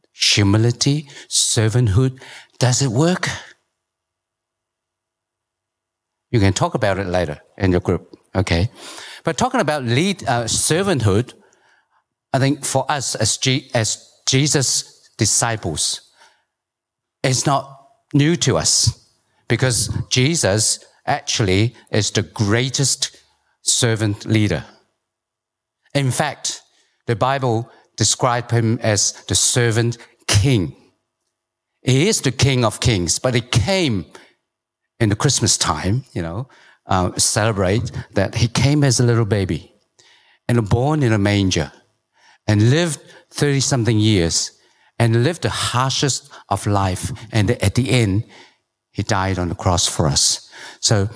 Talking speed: 125 wpm